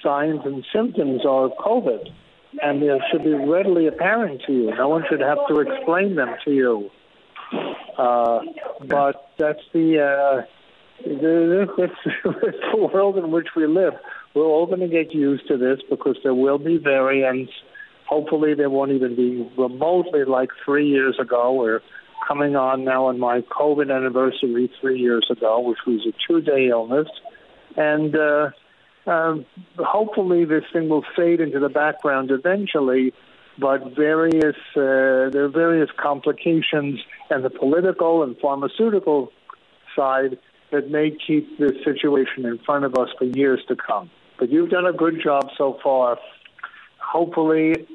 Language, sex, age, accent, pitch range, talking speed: English, male, 60-79, American, 135-165 Hz, 155 wpm